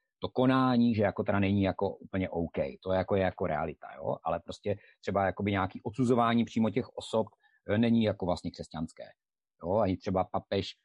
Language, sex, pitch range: Czech, male, 90-100 Hz